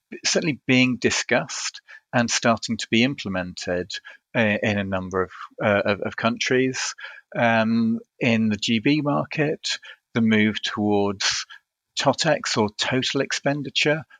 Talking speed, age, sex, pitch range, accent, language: 120 wpm, 40-59, male, 100-120 Hz, British, English